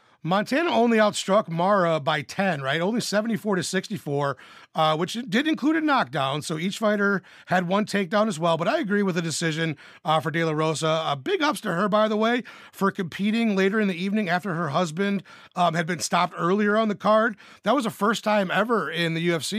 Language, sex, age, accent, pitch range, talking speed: English, male, 30-49, American, 160-195 Hz, 215 wpm